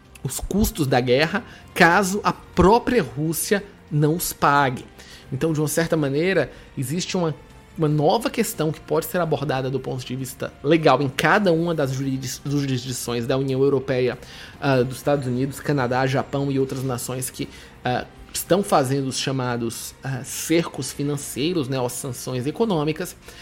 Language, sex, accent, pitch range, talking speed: Portuguese, male, Brazilian, 135-170 Hz, 155 wpm